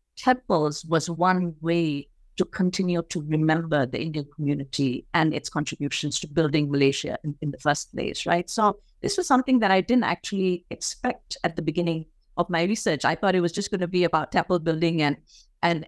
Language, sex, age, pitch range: English, female, 50-69, 155-180 Hz